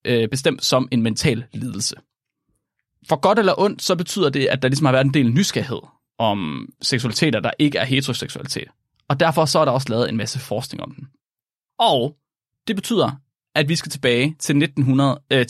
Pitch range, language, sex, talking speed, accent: 120-150 Hz, Danish, male, 185 wpm, native